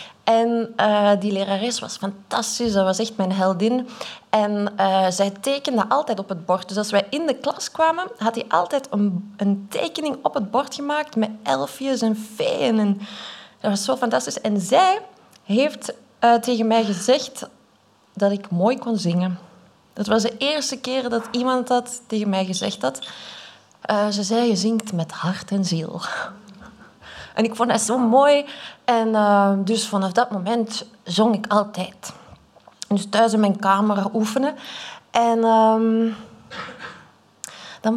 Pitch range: 200-250 Hz